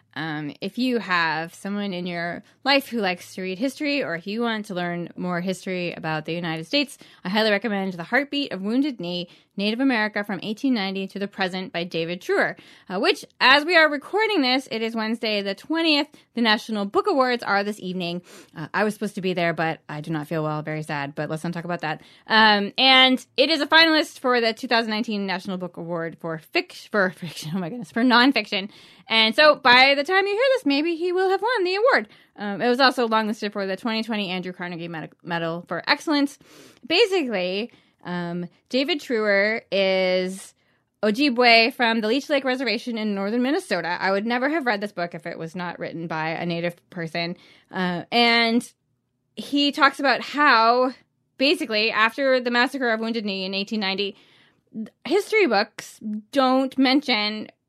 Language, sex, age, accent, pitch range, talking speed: English, female, 20-39, American, 180-260 Hz, 190 wpm